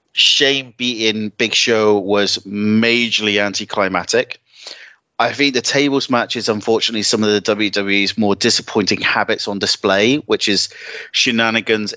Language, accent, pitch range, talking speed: English, British, 105-115 Hz, 125 wpm